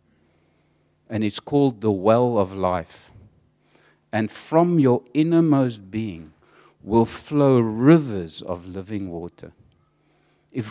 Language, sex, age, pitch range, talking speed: English, male, 60-79, 115-155 Hz, 105 wpm